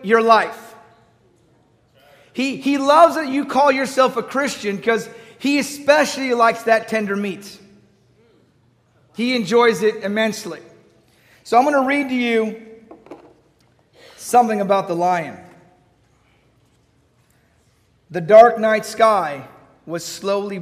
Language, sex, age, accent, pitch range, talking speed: English, male, 40-59, American, 150-220 Hz, 115 wpm